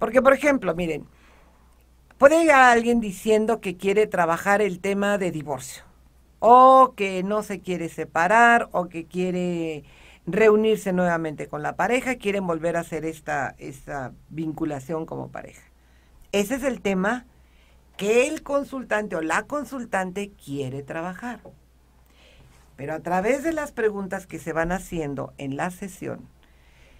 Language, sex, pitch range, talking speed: Spanish, female, 160-225 Hz, 140 wpm